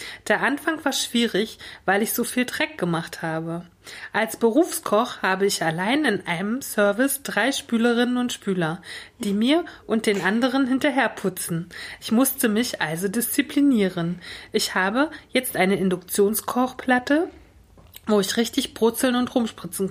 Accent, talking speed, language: German, 135 wpm, German